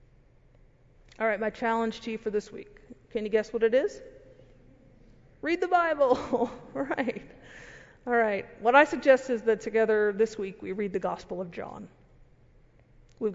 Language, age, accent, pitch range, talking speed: English, 50-69, American, 185-245 Hz, 165 wpm